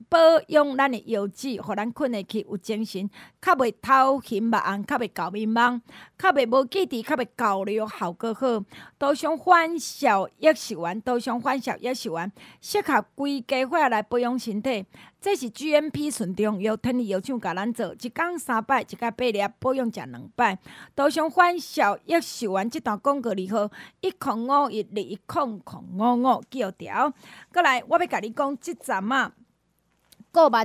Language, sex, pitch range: Chinese, female, 220-285 Hz